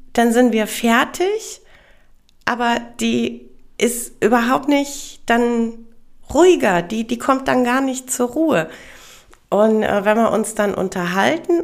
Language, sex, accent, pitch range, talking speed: German, female, German, 205-265 Hz, 135 wpm